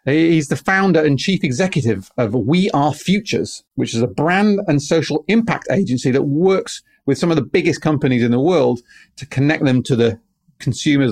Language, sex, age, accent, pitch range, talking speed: English, male, 40-59, British, 125-175 Hz, 190 wpm